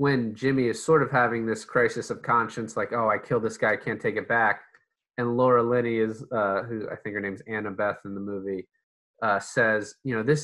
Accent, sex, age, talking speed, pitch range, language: American, male, 20-39, 235 wpm, 105-120 Hz, English